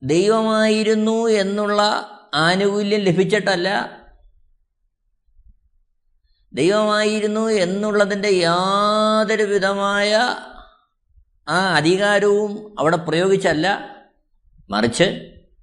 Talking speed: 50 wpm